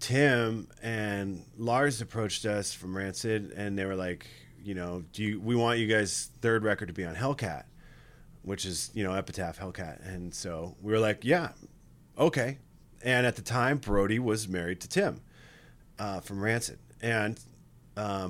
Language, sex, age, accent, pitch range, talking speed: English, male, 30-49, American, 100-120 Hz, 170 wpm